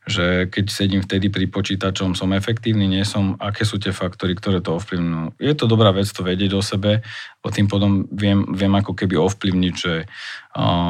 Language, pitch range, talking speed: Slovak, 95-105 Hz, 195 wpm